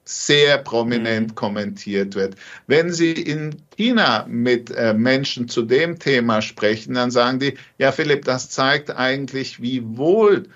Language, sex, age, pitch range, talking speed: German, male, 50-69, 125-165 Hz, 135 wpm